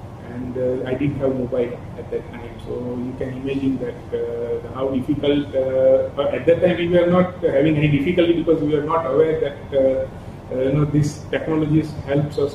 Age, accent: 30-49, Indian